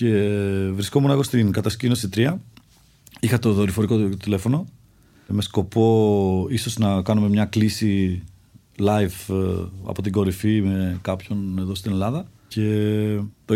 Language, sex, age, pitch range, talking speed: Greek, male, 40-59, 100-125 Hz, 130 wpm